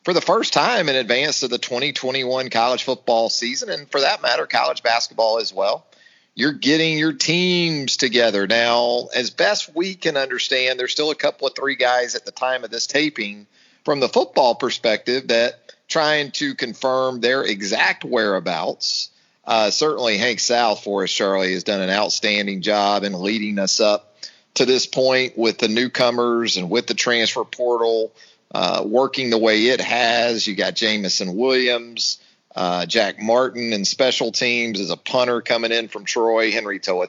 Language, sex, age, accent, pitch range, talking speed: English, male, 40-59, American, 110-130 Hz, 175 wpm